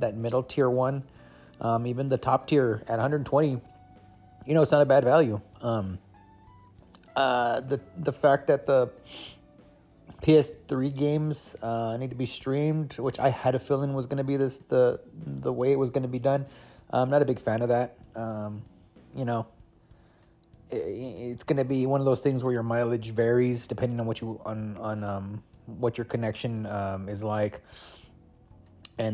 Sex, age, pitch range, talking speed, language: male, 30-49, 110-140 Hz, 180 wpm, English